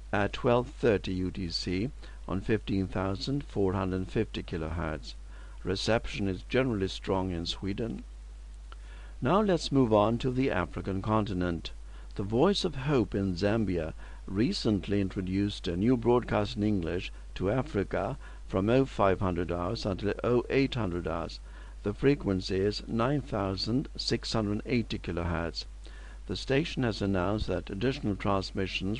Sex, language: male, English